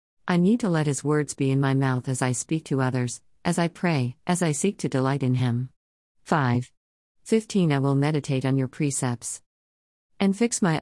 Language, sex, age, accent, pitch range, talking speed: English, female, 50-69, American, 125-160 Hz, 200 wpm